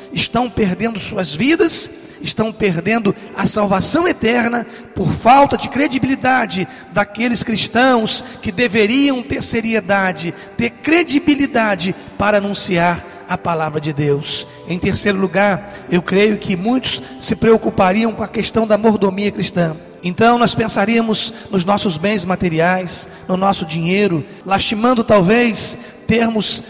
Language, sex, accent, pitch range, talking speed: Portuguese, male, Brazilian, 190-230 Hz, 125 wpm